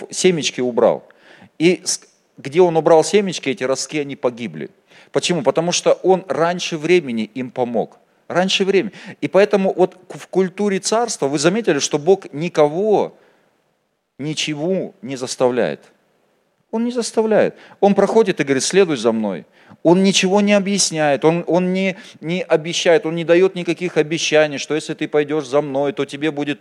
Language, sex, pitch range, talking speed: Russian, male, 145-190 Hz, 155 wpm